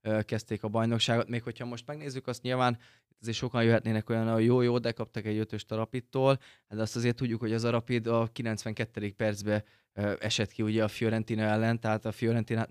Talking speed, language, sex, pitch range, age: 195 wpm, Hungarian, male, 110-120 Hz, 20-39